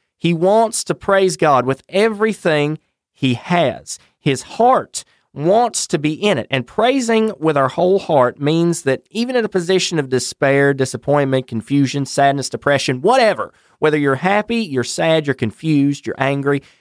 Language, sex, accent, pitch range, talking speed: English, male, American, 130-190 Hz, 155 wpm